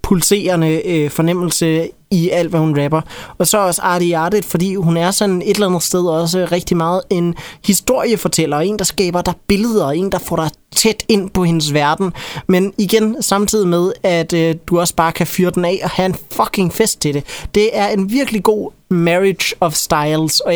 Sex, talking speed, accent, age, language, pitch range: male, 195 wpm, native, 30-49, Danish, 160-195 Hz